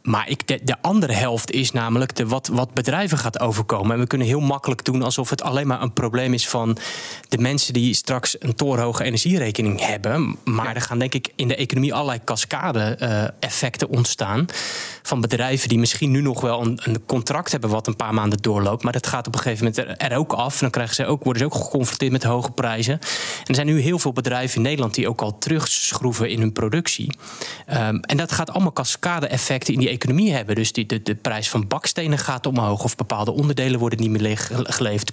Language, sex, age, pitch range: Dutch, male, 20-39, 120-140 Hz